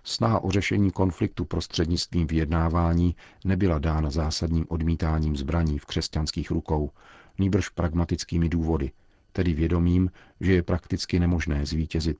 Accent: native